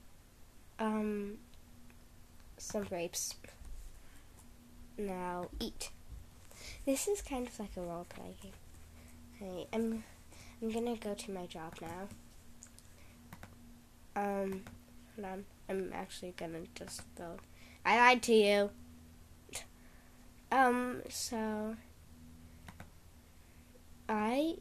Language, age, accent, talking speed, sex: English, 10-29, American, 95 wpm, female